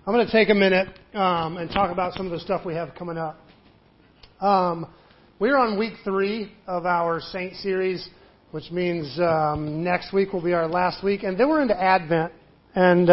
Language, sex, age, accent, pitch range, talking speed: English, male, 40-59, American, 165-190 Hz, 195 wpm